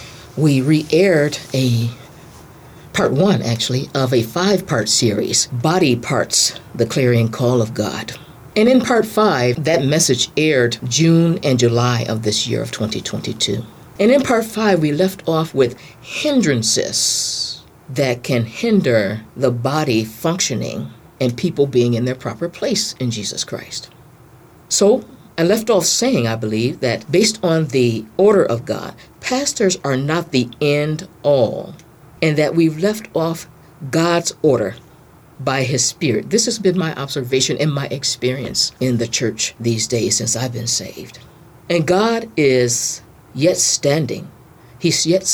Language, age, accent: English, 50-69, American